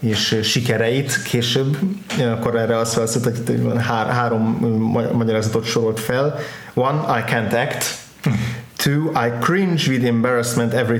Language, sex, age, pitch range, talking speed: Hungarian, male, 30-49, 110-130 Hz, 110 wpm